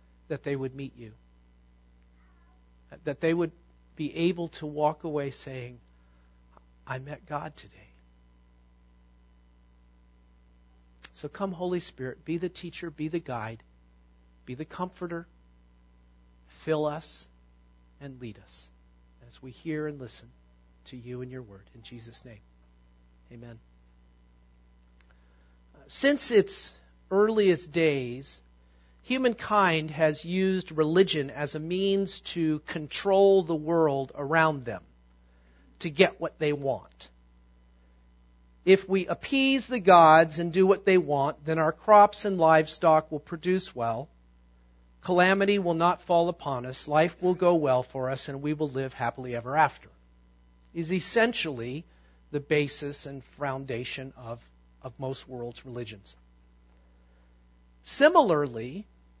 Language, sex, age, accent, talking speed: English, male, 50-69, American, 125 wpm